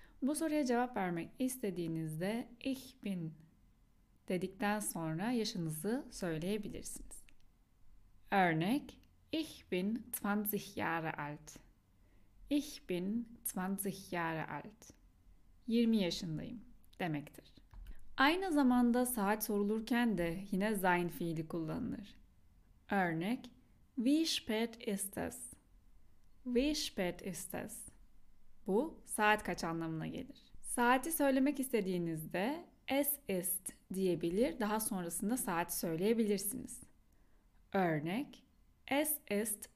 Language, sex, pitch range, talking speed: Turkish, female, 175-250 Hz, 90 wpm